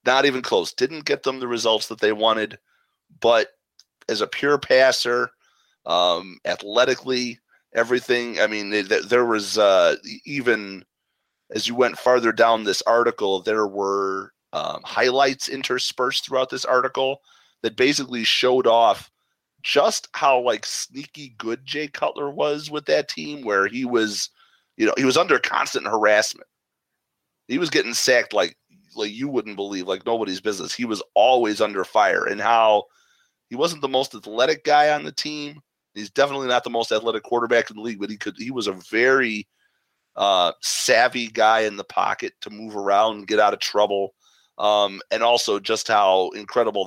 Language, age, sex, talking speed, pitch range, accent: English, 30-49, male, 165 wpm, 105-130 Hz, American